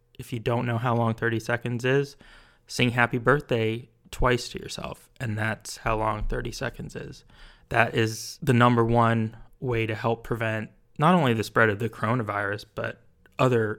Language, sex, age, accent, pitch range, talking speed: English, male, 20-39, American, 110-125 Hz, 175 wpm